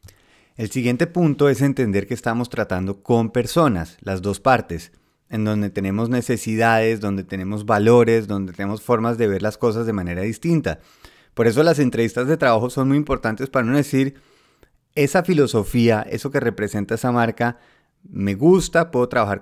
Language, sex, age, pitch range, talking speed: Spanish, male, 30-49, 105-135 Hz, 165 wpm